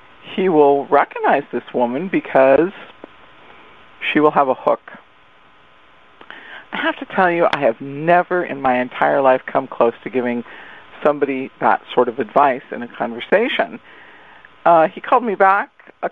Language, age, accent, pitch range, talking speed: English, 50-69, American, 105-165 Hz, 155 wpm